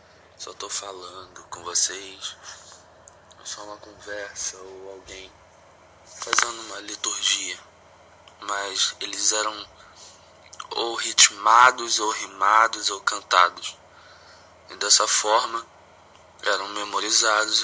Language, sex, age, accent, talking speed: English, male, 20-39, Brazilian, 95 wpm